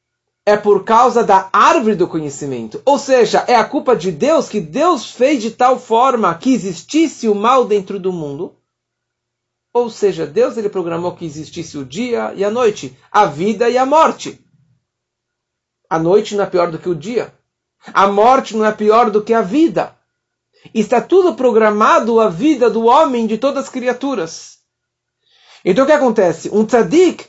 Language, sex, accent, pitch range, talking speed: Portuguese, male, Brazilian, 185-250 Hz, 175 wpm